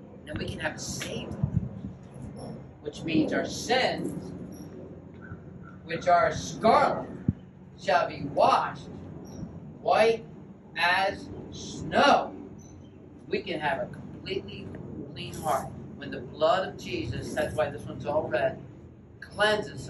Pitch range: 135-205 Hz